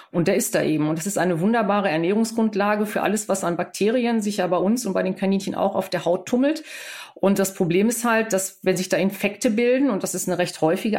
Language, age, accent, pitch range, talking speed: German, 50-69, German, 185-220 Hz, 250 wpm